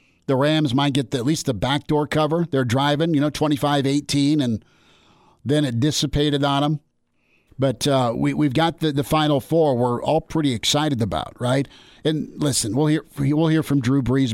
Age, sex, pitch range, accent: 50-69, male, 125-150 Hz, American